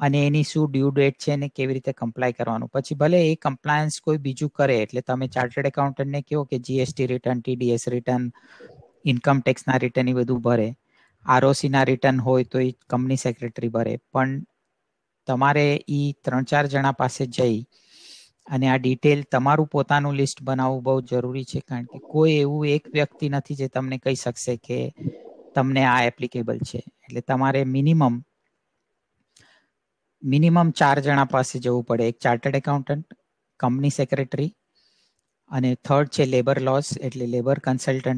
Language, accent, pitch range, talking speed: Gujarati, native, 125-145 Hz, 140 wpm